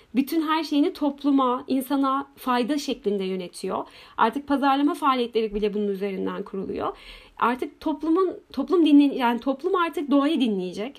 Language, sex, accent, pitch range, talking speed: Turkish, female, native, 230-295 Hz, 130 wpm